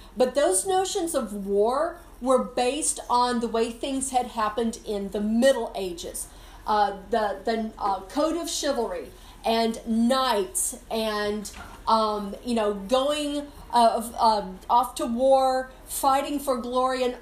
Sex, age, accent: female, 40-59, American